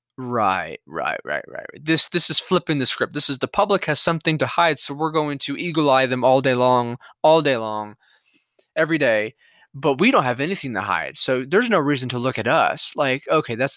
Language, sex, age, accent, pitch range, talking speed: English, male, 20-39, American, 125-175 Hz, 220 wpm